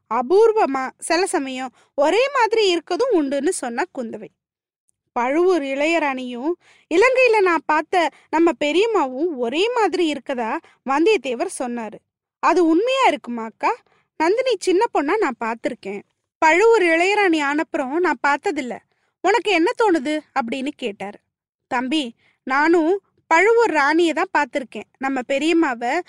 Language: Tamil